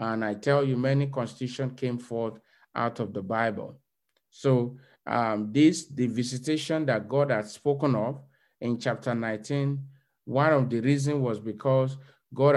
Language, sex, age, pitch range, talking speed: English, male, 50-69, 120-145 Hz, 155 wpm